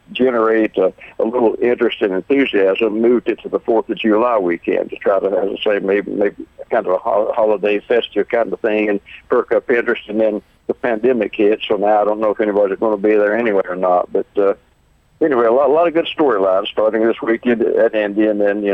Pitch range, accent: 105-115 Hz, American